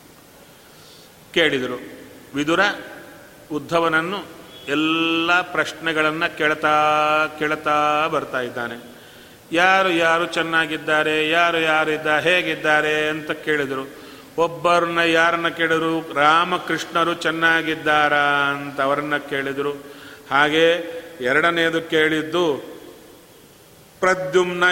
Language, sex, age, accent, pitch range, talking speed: Kannada, male, 40-59, native, 150-170 Hz, 70 wpm